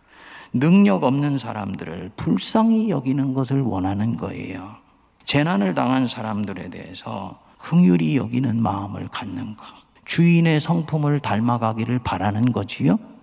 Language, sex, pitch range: Korean, male, 110-150 Hz